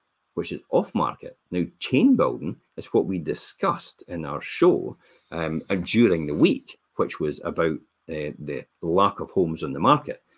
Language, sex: English, male